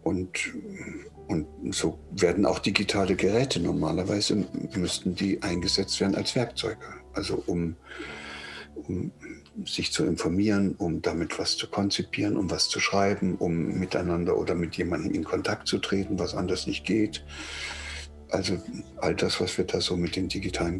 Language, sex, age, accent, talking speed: German, male, 60-79, German, 150 wpm